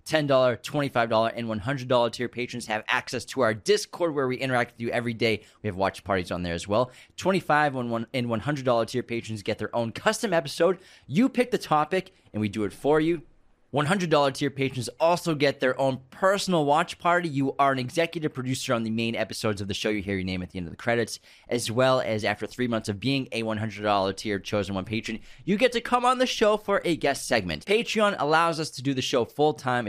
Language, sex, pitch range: English, male, 115-175 Hz